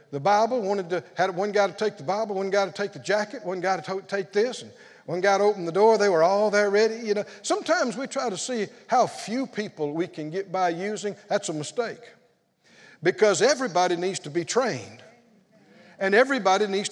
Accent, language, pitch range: American, English, 185-235 Hz